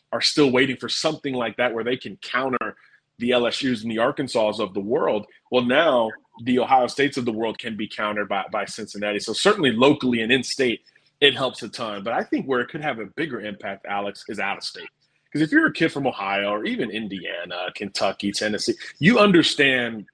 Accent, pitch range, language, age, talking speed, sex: American, 110-140 Hz, English, 30-49, 205 wpm, male